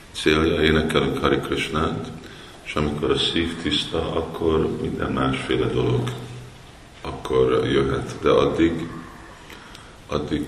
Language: Hungarian